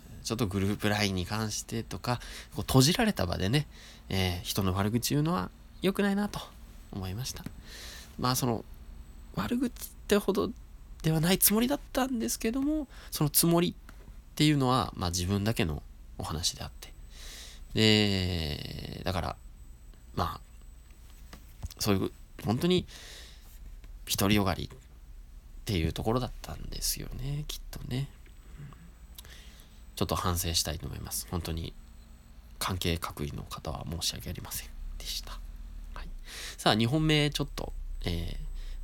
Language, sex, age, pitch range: Japanese, male, 20-39, 75-125 Hz